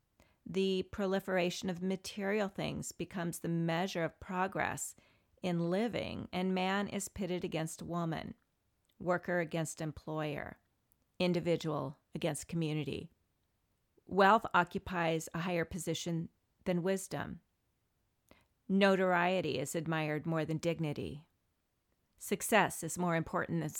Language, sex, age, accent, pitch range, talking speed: English, female, 40-59, American, 155-190 Hz, 105 wpm